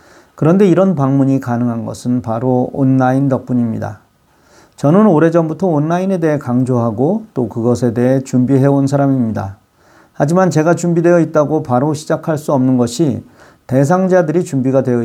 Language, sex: Korean, male